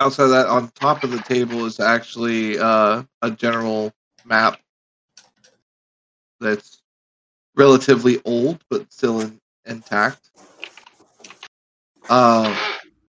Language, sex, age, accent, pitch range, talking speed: English, male, 20-39, American, 110-125 Hz, 95 wpm